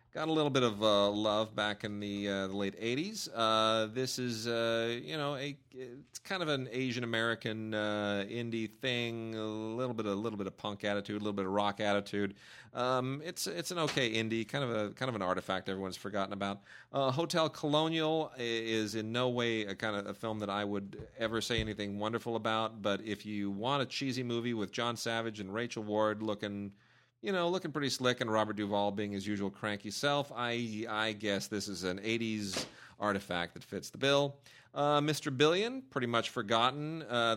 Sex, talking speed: male, 205 wpm